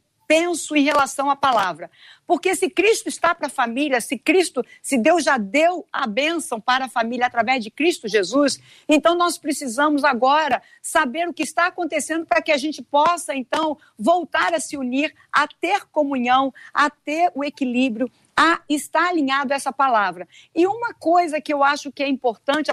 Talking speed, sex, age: 180 wpm, female, 50-69